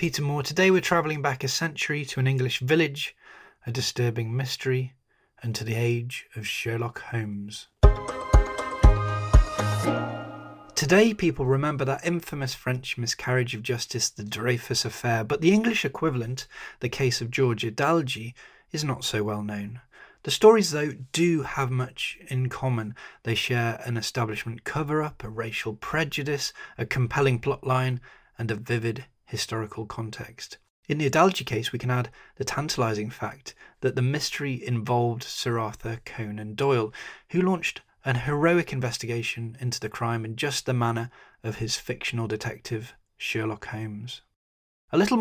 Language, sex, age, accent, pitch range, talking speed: English, male, 20-39, British, 115-140 Hz, 145 wpm